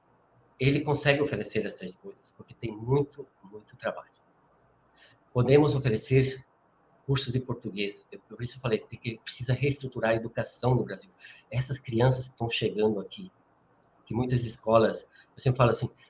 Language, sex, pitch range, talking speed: Portuguese, male, 115-145 Hz, 150 wpm